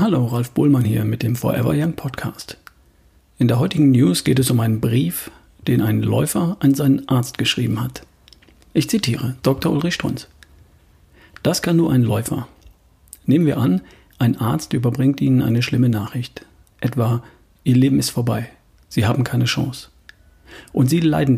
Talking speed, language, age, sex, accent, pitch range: 165 wpm, German, 50-69, male, German, 105-135 Hz